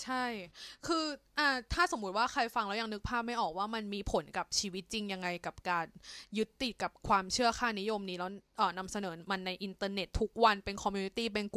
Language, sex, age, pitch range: Thai, female, 20-39, 195-240 Hz